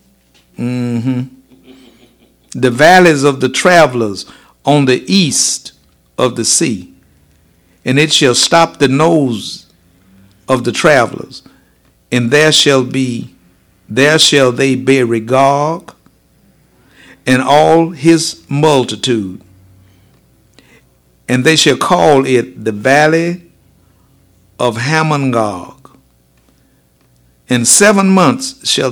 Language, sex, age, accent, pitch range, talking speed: English, male, 60-79, American, 90-150 Hz, 100 wpm